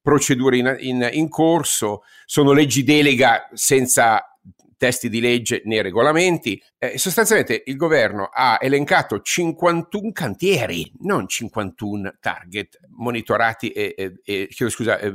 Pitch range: 105-140 Hz